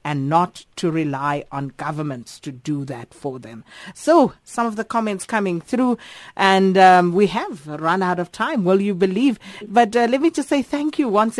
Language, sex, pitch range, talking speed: English, female, 155-200 Hz, 200 wpm